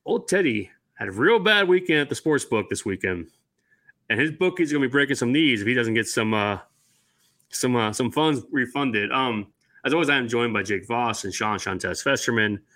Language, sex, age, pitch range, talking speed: English, male, 30-49, 115-145 Hz, 215 wpm